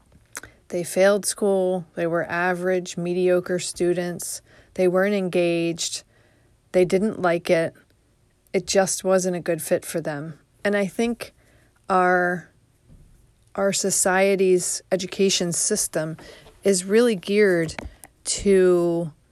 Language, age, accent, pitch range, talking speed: English, 40-59, American, 160-190 Hz, 110 wpm